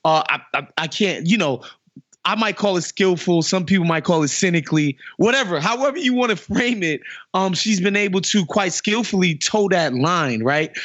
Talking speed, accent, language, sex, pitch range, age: 200 wpm, American, English, male, 165-215 Hz, 20-39